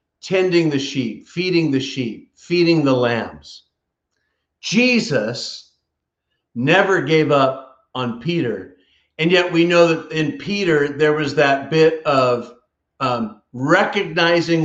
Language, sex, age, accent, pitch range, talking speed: English, male, 50-69, American, 150-220 Hz, 120 wpm